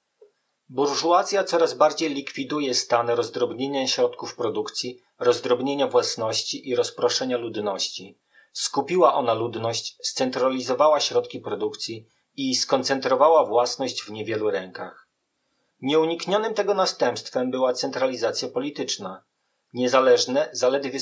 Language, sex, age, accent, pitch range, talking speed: Polish, male, 40-59, native, 120-165 Hz, 95 wpm